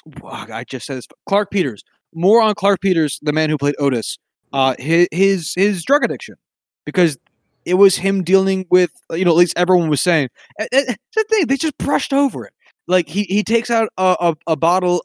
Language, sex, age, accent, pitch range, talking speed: English, male, 20-39, American, 135-190 Hz, 205 wpm